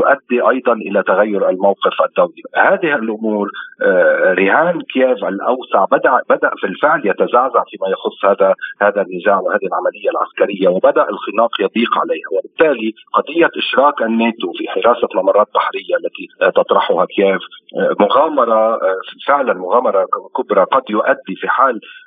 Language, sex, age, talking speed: Arabic, male, 40-59, 125 wpm